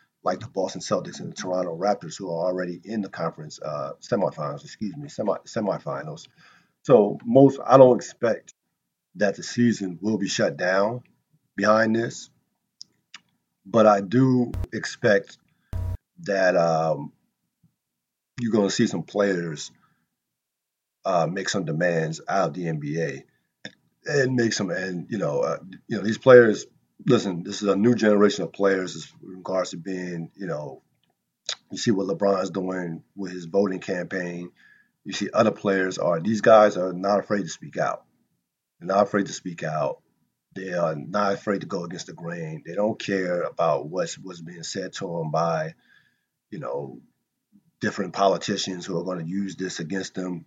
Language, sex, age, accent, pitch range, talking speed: English, male, 40-59, American, 90-105 Hz, 165 wpm